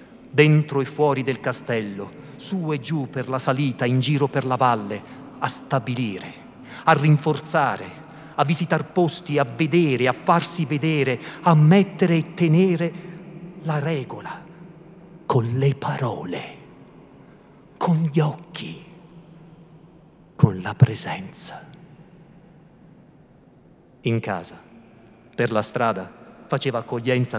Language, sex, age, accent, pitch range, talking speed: Italian, male, 50-69, native, 120-165 Hz, 110 wpm